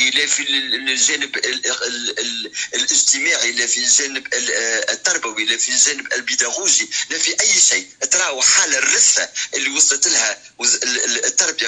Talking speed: 135 wpm